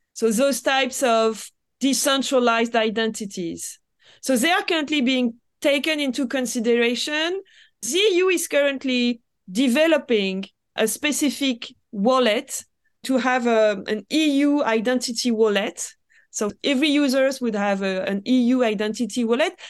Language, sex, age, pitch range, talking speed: English, female, 30-49, 225-275 Hz, 115 wpm